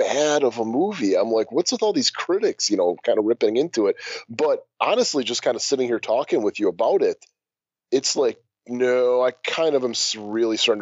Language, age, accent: English, 30-49, American